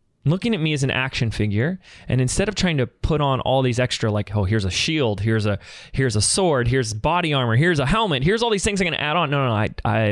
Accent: American